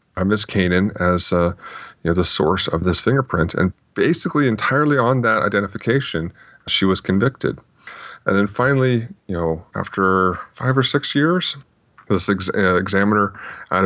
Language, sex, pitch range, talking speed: English, male, 90-105 Hz, 145 wpm